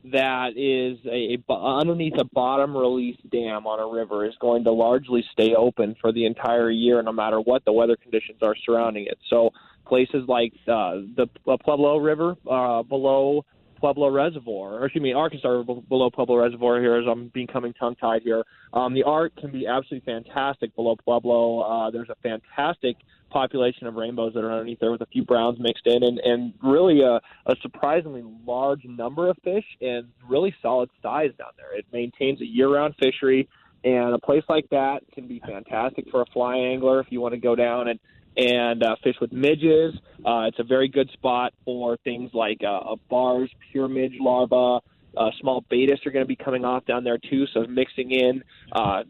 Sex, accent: male, American